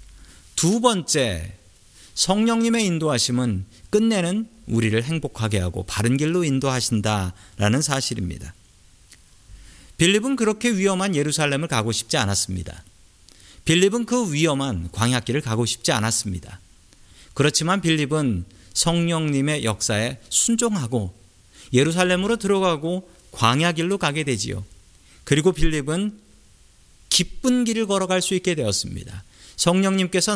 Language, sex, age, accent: Korean, male, 40-59, native